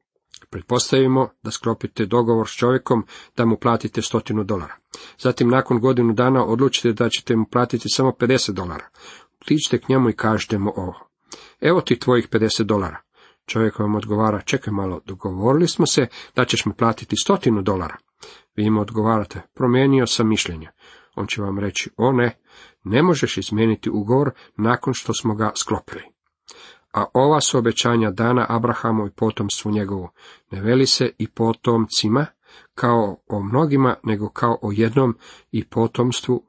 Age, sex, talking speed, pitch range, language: 40-59, male, 150 wpm, 105-125 Hz, Croatian